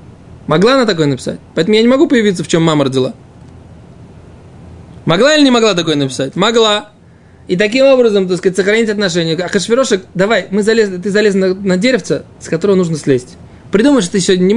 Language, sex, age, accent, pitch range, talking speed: Russian, male, 20-39, native, 155-220 Hz, 185 wpm